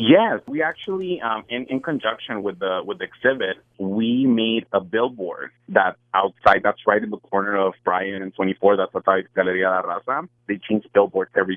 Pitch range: 100-115 Hz